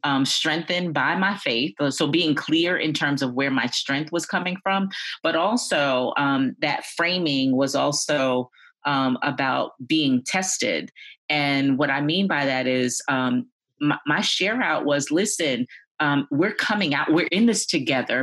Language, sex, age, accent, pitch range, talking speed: English, female, 30-49, American, 140-185 Hz, 165 wpm